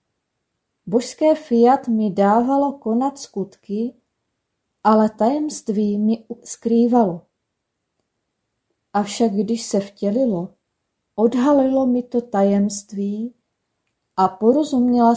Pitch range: 205-245 Hz